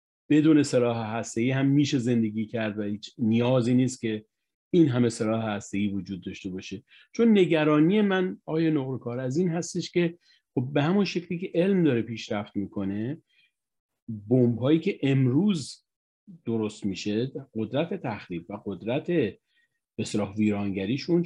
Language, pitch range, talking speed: Persian, 110-150 Hz, 130 wpm